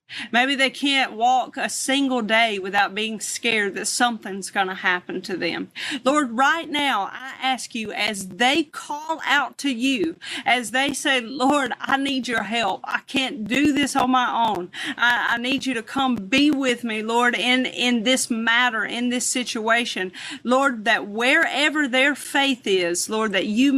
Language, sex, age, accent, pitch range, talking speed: English, female, 40-59, American, 225-275 Hz, 175 wpm